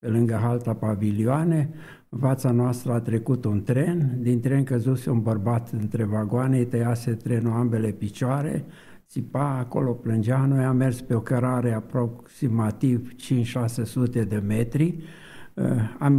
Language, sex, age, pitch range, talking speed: Romanian, male, 60-79, 115-130 Hz, 140 wpm